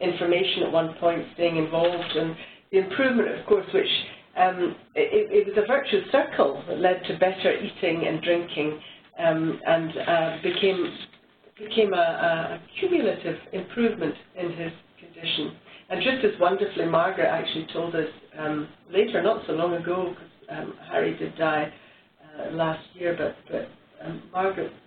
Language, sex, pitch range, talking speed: English, female, 165-200 Hz, 155 wpm